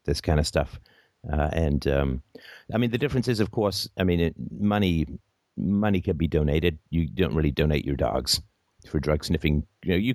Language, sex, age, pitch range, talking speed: English, male, 50-69, 75-95 Hz, 195 wpm